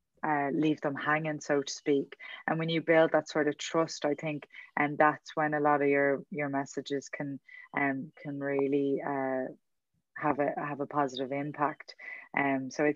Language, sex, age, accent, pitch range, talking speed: English, female, 20-39, Irish, 140-155 Hz, 185 wpm